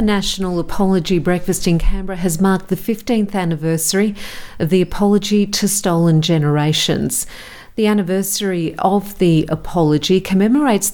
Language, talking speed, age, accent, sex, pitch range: English, 120 wpm, 50-69, Australian, female, 160-195 Hz